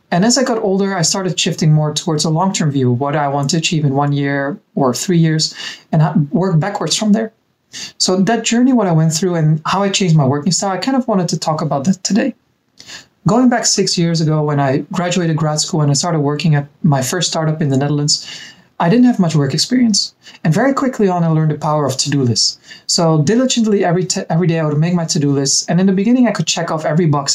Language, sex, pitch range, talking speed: English, male, 150-195 Hz, 250 wpm